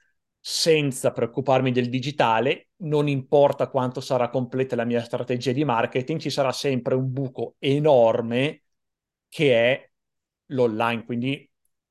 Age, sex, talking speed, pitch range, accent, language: 30-49, male, 120 wpm, 115-135 Hz, native, Italian